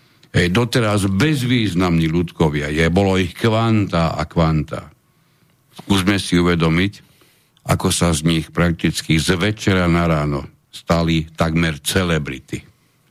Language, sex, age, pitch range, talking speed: Slovak, male, 60-79, 90-130 Hz, 115 wpm